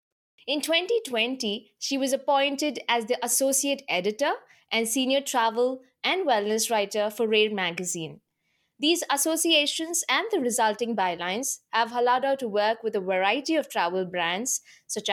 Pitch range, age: 210-270 Hz, 20-39